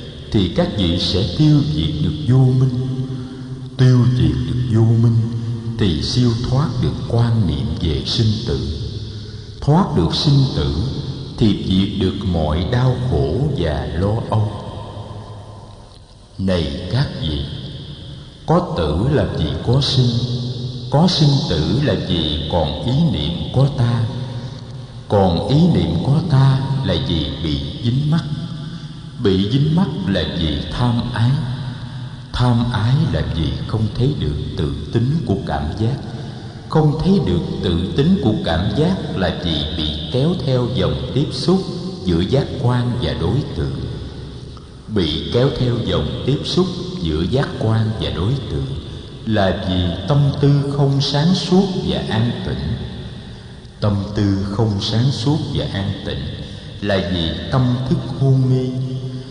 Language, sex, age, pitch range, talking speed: Vietnamese, male, 60-79, 105-135 Hz, 145 wpm